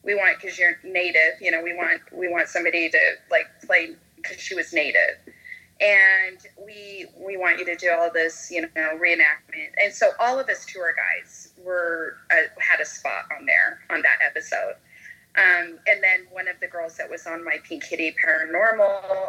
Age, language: 30-49, English